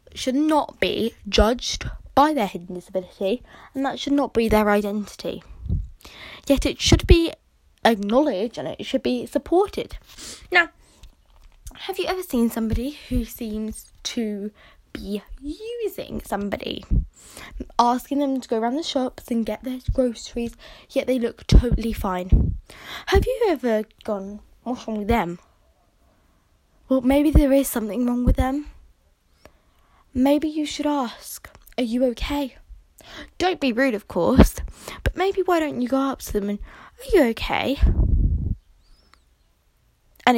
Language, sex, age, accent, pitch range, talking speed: English, female, 10-29, British, 215-300 Hz, 140 wpm